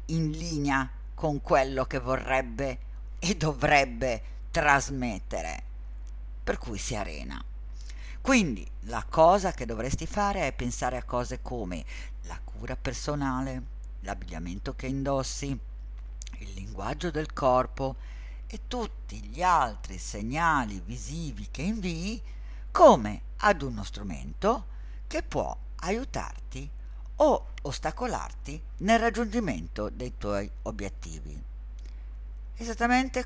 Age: 50-69